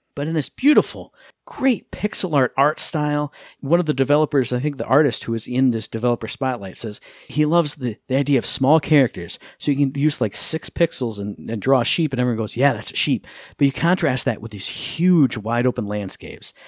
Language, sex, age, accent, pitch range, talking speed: English, male, 50-69, American, 120-155 Hz, 220 wpm